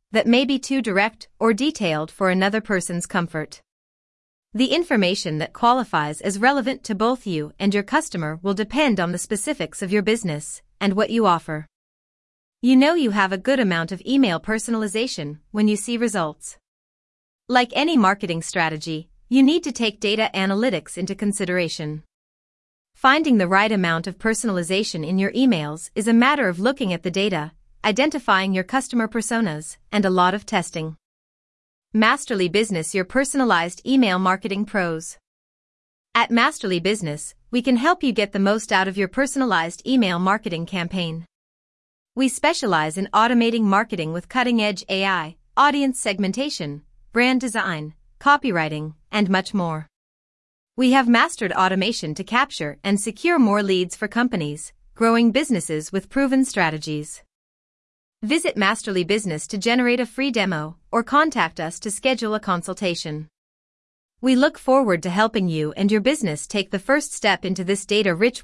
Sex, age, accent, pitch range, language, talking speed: female, 30-49, American, 175-235 Hz, English, 155 wpm